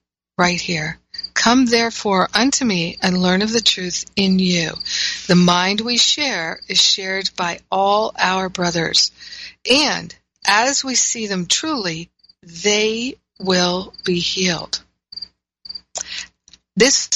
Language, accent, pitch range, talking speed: English, American, 180-215 Hz, 120 wpm